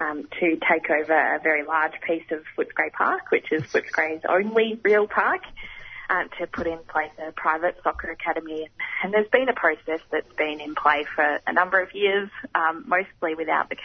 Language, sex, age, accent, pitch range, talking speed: English, female, 20-39, Australian, 155-185 Hz, 185 wpm